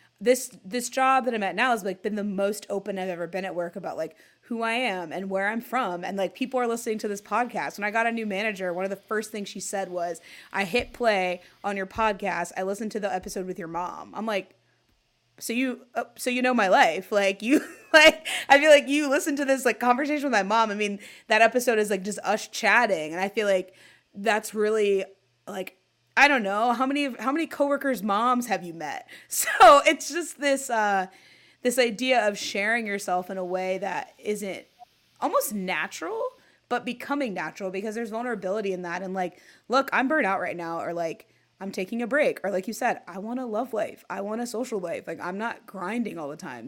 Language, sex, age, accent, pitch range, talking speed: English, female, 20-39, American, 190-250 Hz, 225 wpm